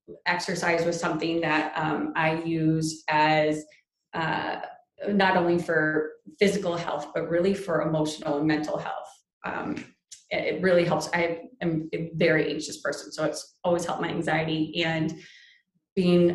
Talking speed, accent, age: 145 wpm, American, 30-49